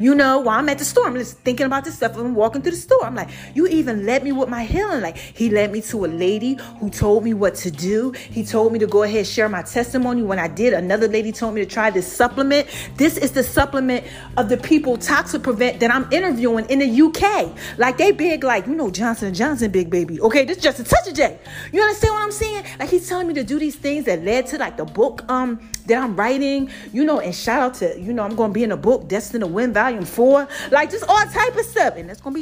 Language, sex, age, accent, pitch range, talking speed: English, female, 30-49, American, 220-310 Hz, 275 wpm